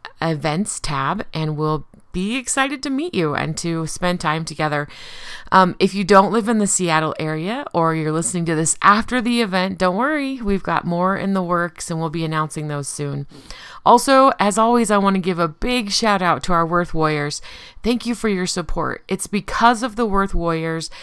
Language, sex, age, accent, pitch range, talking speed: English, female, 30-49, American, 160-200 Hz, 205 wpm